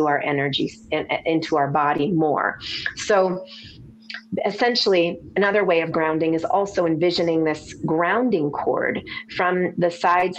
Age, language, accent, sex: 30-49, English, American, female